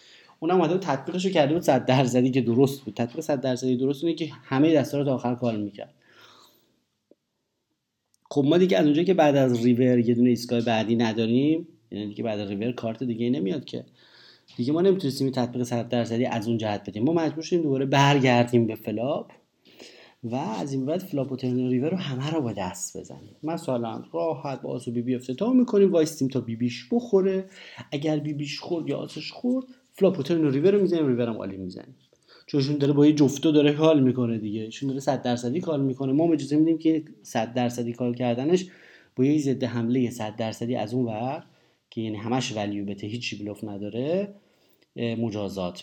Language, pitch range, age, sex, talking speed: Persian, 120-160 Hz, 30-49, male, 165 wpm